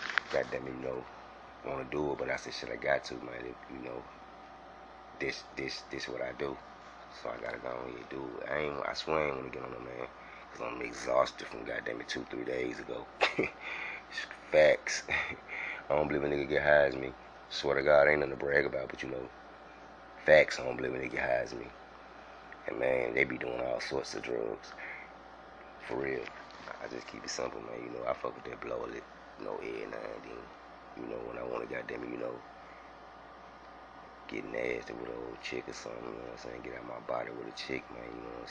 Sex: male